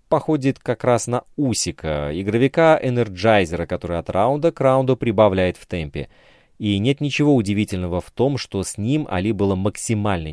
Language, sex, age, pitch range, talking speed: Russian, male, 30-49, 90-125 Hz, 155 wpm